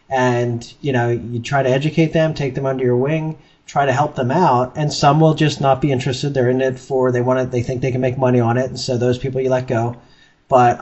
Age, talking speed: 30-49, 265 wpm